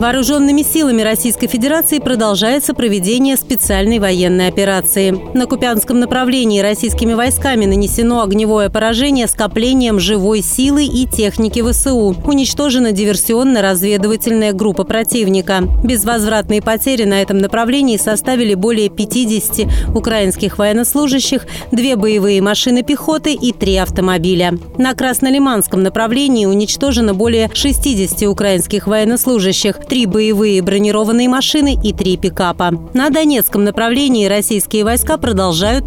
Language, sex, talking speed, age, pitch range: Russian, female, 110 wpm, 30-49, 200-250 Hz